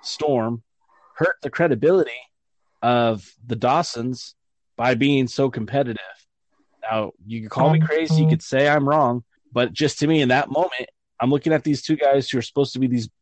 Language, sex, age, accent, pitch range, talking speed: English, male, 20-39, American, 120-150 Hz, 185 wpm